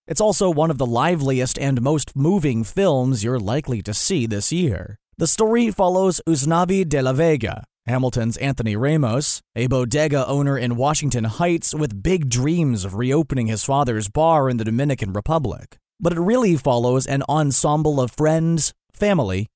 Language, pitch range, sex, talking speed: English, 120-160 Hz, male, 165 wpm